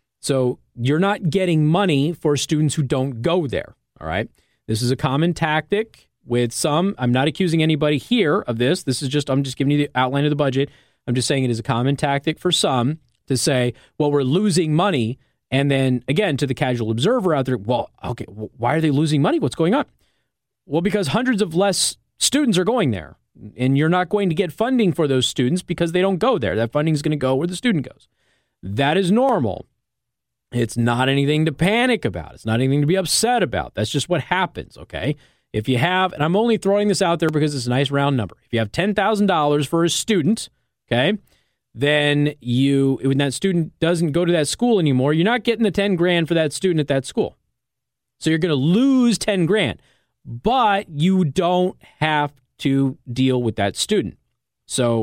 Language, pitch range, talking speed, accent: English, 130-180 Hz, 210 wpm, American